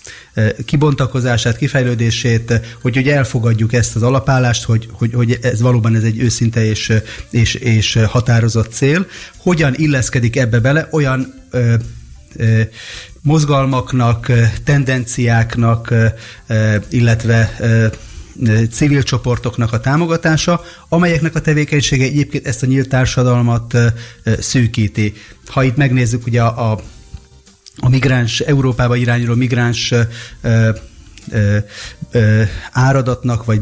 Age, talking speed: 30-49, 120 wpm